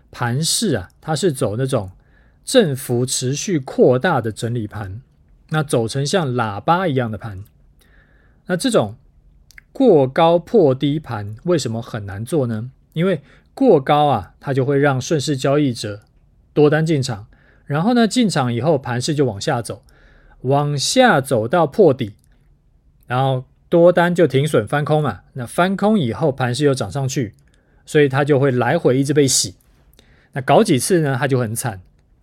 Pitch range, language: 115-150 Hz, Chinese